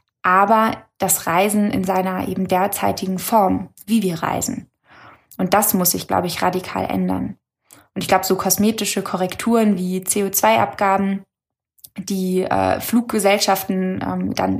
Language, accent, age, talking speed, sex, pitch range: German, German, 20-39, 130 wpm, female, 185-205 Hz